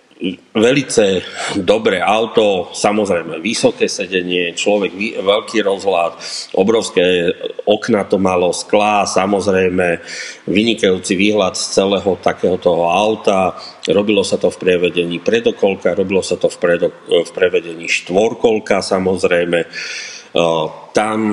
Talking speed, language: 100 wpm, English